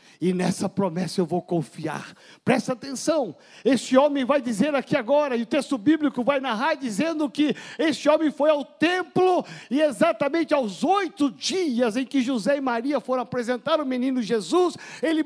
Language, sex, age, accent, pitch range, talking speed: Portuguese, male, 50-69, Brazilian, 225-315 Hz, 170 wpm